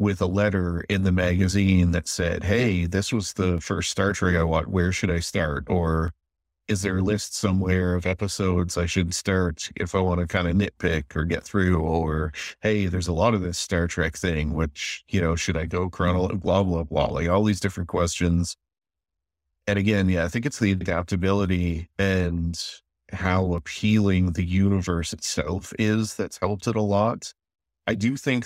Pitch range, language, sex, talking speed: 85-100 Hz, English, male, 190 wpm